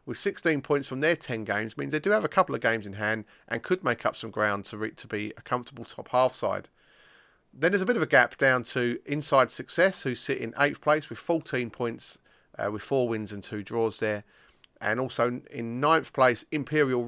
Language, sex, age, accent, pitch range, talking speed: English, male, 30-49, British, 110-150 Hz, 230 wpm